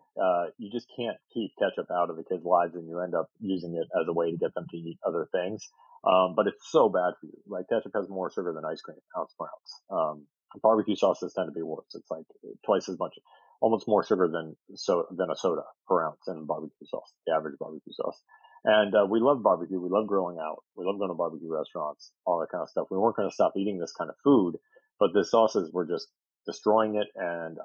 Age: 40-59